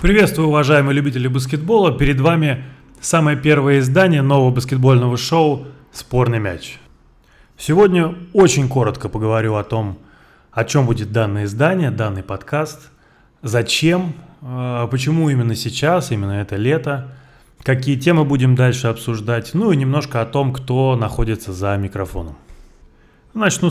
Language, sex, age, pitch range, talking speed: Russian, male, 20-39, 115-145 Hz, 125 wpm